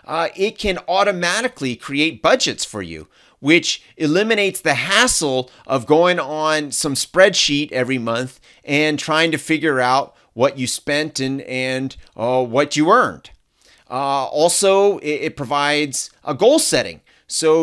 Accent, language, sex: American, English, male